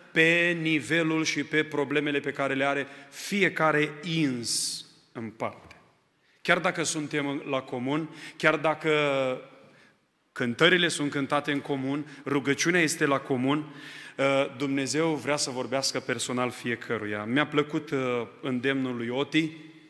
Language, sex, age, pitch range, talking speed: Romanian, male, 30-49, 130-155 Hz, 120 wpm